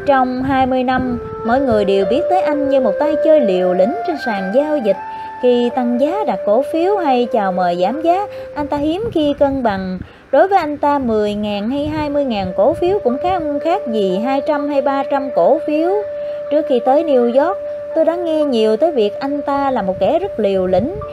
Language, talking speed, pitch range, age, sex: English, 205 wpm, 220-295 Hz, 20-39, female